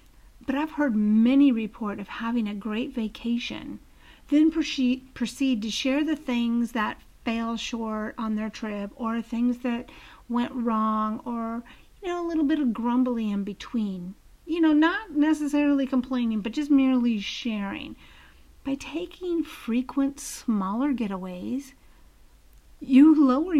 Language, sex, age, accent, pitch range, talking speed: English, female, 50-69, American, 220-275 Hz, 135 wpm